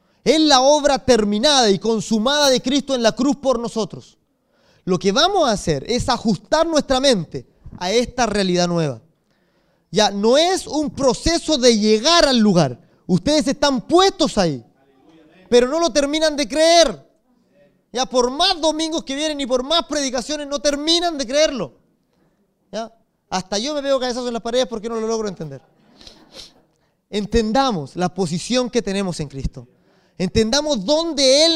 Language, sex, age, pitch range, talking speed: English, male, 30-49, 190-280 Hz, 160 wpm